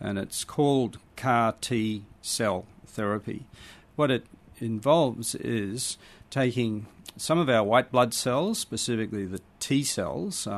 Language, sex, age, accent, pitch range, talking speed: English, male, 40-59, Australian, 105-125 Hz, 115 wpm